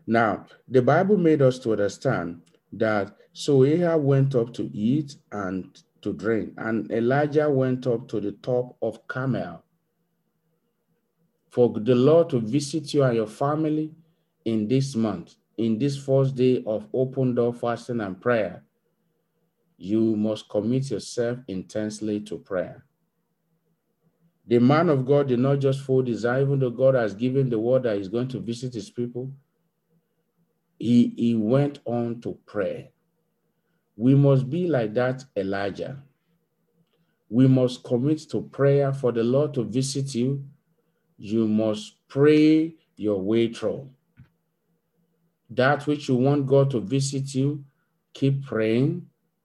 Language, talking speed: English, 140 wpm